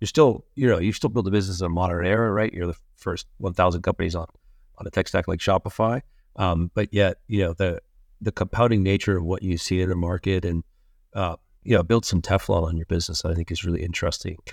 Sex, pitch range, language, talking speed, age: male, 85-100 Hz, English, 235 wpm, 40-59